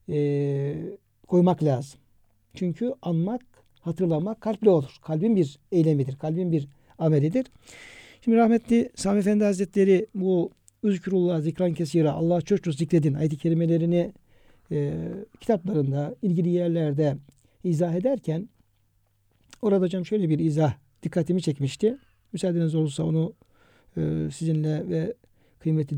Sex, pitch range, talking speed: male, 135-195 Hz, 110 wpm